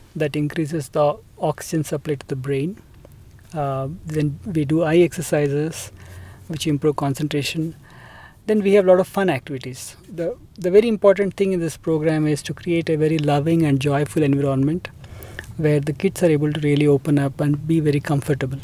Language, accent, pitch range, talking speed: English, Indian, 135-165 Hz, 175 wpm